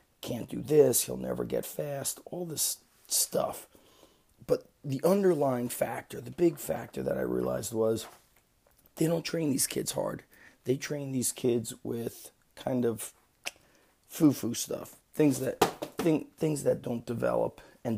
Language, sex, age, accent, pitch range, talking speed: English, male, 30-49, American, 115-135 Hz, 145 wpm